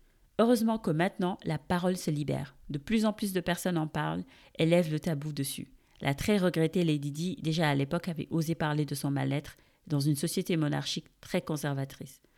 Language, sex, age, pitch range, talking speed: English, female, 40-59, 145-180 Hz, 195 wpm